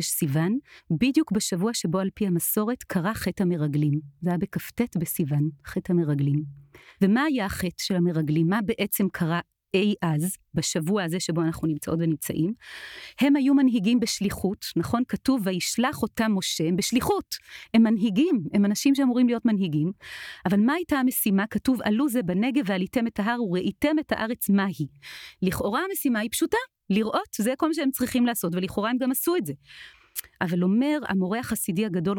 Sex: female